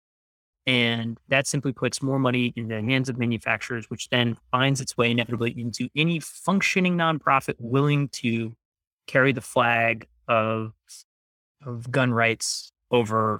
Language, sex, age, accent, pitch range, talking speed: English, male, 30-49, American, 115-135 Hz, 140 wpm